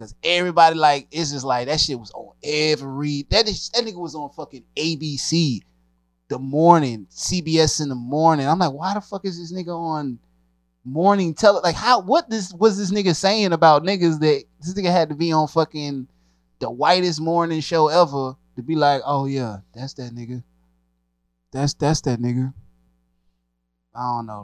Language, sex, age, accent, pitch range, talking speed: English, male, 20-39, American, 100-155 Hz, 180 wpm